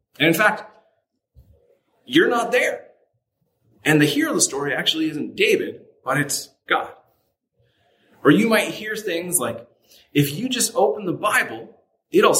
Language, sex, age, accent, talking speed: English, male, 30-49, American, 150 wpm